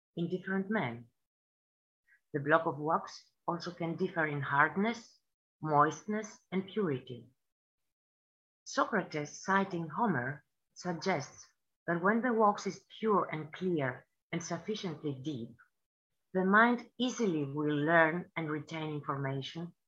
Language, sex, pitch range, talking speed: English, female, 155-195 Hz, 115 wpm